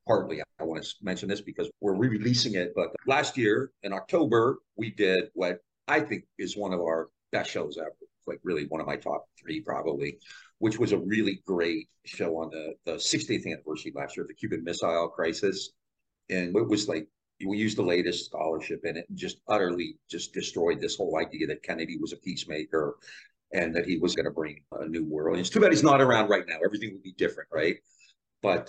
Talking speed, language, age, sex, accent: 210 wpm, English, 50-69, male, American